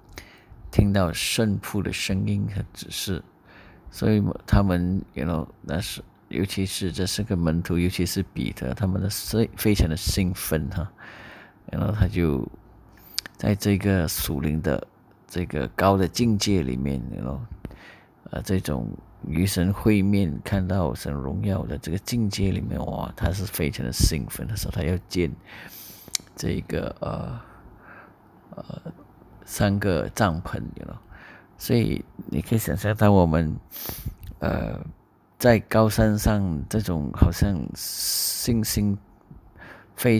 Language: Chinese